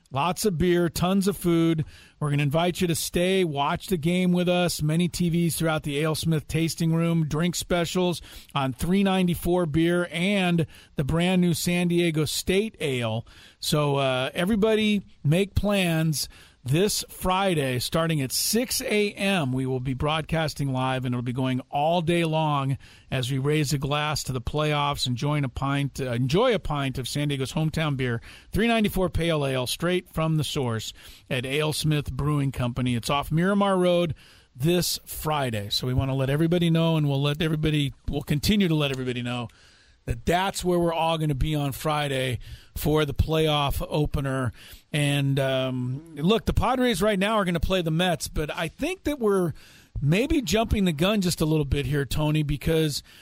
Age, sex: 40-59, male